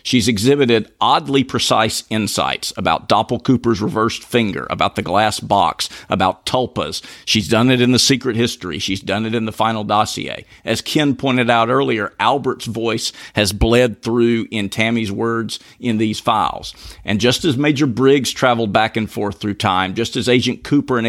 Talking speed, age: 175 wpm, 50-69